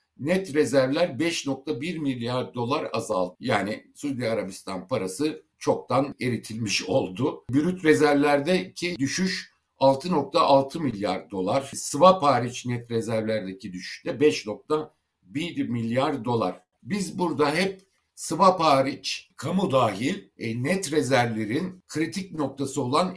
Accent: native